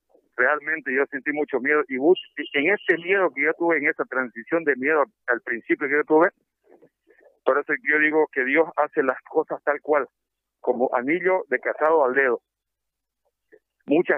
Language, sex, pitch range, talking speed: Spanish, male, 135-170 Hz, 170 wpm